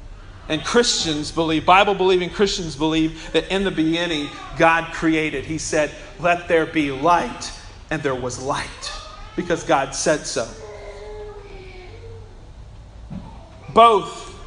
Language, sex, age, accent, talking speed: English, male, 40-59, American, 110 wpm